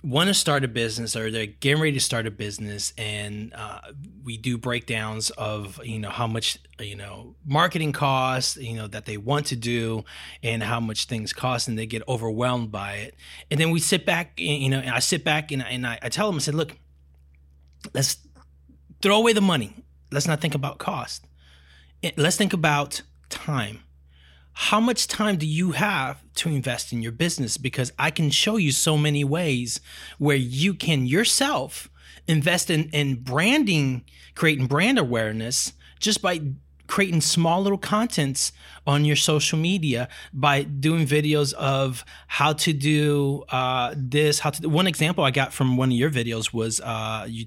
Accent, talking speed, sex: American, 180 wpm, male